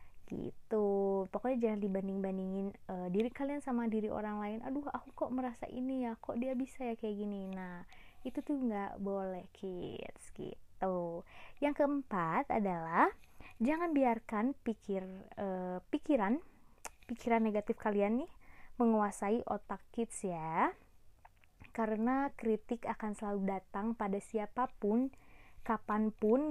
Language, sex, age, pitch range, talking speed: Indonesian, female, 20-39, 200-255 Hz, 125 wpm